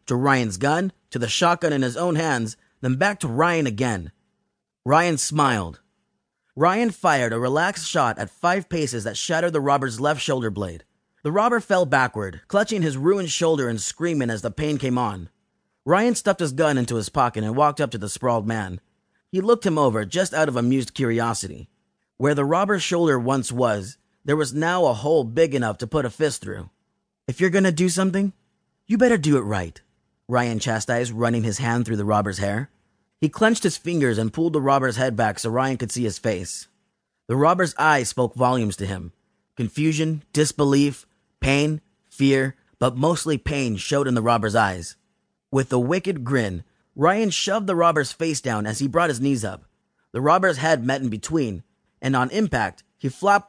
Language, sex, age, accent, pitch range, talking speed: English, male, 30-49, American, 115-165 Hz, 190 wpm